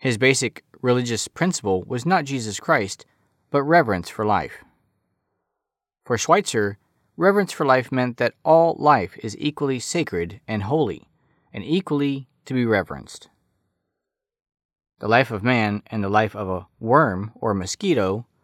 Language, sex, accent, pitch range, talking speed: English, male, American, 105-150 Hz, 140 wpm